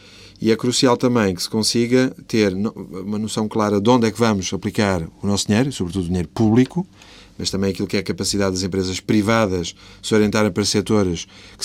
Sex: male